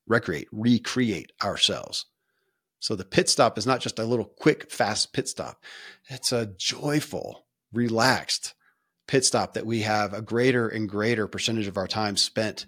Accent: American